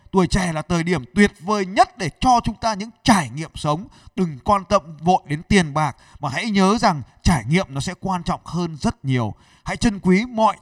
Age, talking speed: 20-39, 225 wpm